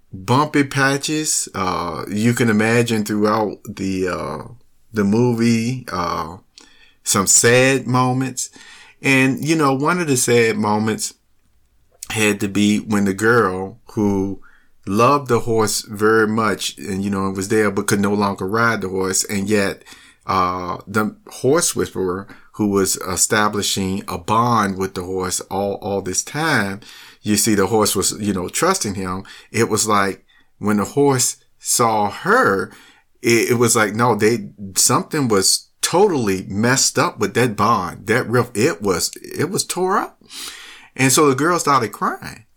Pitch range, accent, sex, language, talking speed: 100-120 Hz, American, male, English, 155 wpm